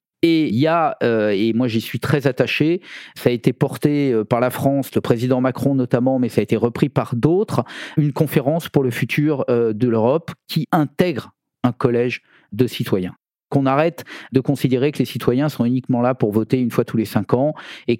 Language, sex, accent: French, male, French